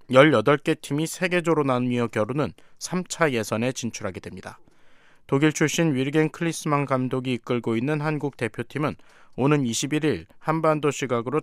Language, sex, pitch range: Korean, male, 115-150 Hz